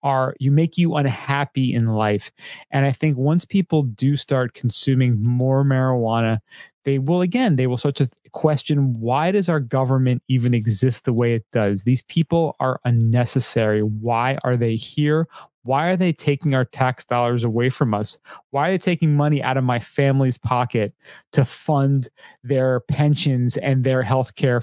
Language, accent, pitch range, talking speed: English, American, 125-155 Hz, 175 wpm